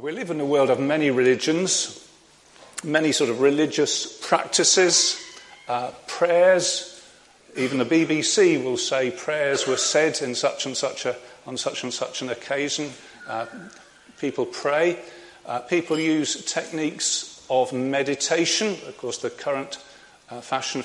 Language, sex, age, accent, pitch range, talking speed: English, male, 40-59, British, 130-165 Hz, 140 wpm